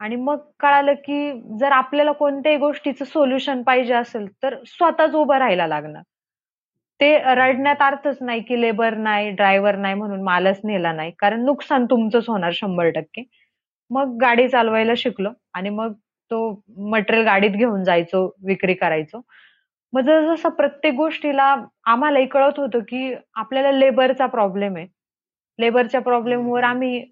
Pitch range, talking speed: 205-275 Hz, 150 wpm